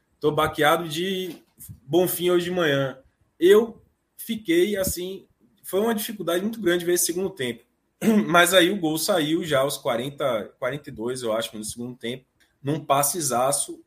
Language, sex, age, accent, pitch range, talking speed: Portuguese, male, 20-39, Brazilian, 120-160 Hz, 150 wpm